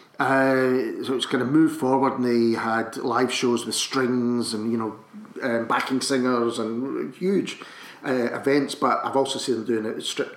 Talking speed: 185 wpm